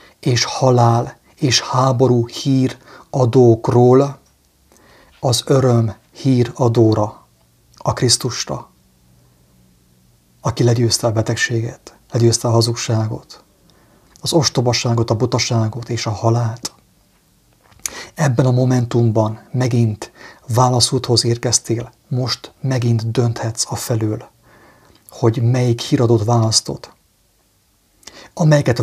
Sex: male